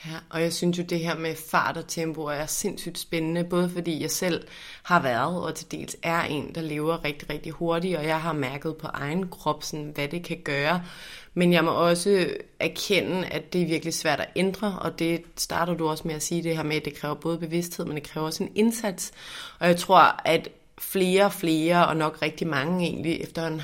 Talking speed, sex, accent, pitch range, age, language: 225 wpm, female, native, 160-180 Hz, 30-49, Danish